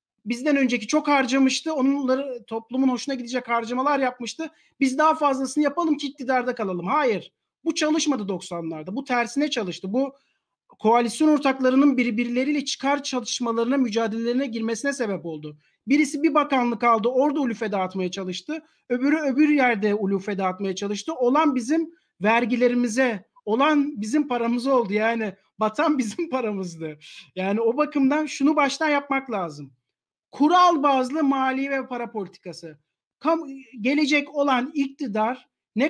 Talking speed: 125 wpm